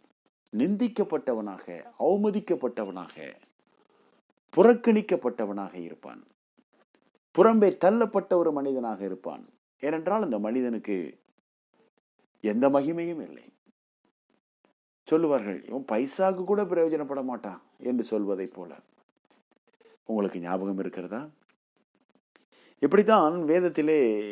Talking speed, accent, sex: 70 wpm, Indian, male